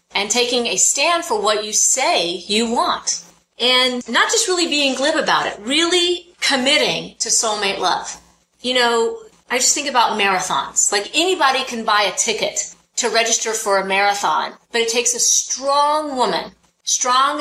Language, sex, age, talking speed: English, female, 30-49, 165 wpm